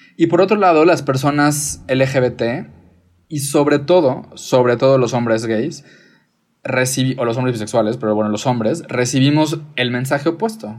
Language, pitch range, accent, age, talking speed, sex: Spanish, 115-140 Hz, Mexican, 20-39, 150 wpm, male